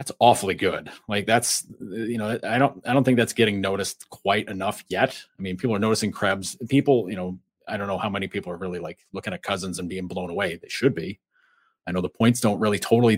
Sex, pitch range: male, 95-130 Hz